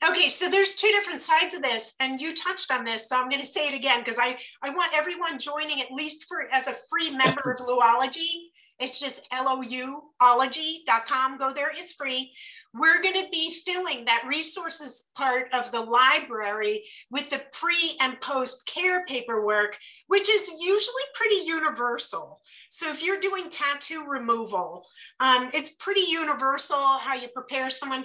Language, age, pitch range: English, 40-59, 235-310 Hz